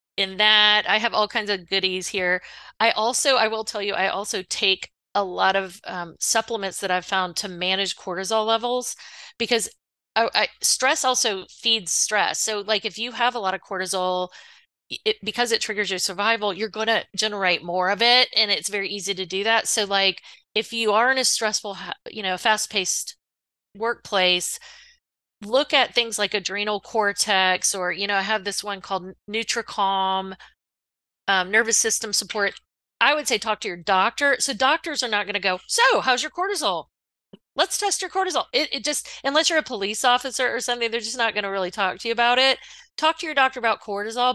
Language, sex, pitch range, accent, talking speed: English, female, 195-240 Hz, American, 195 wpm